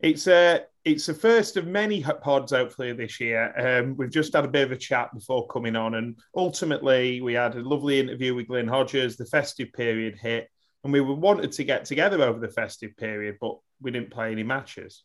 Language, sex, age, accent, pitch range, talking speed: English, male, 30-49, British, 115-145 Hz, 215 wpm